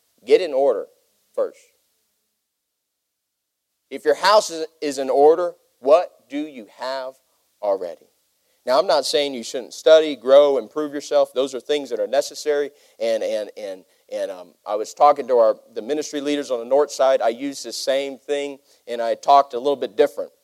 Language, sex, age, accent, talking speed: English, male, 40-59, American, 175 wpm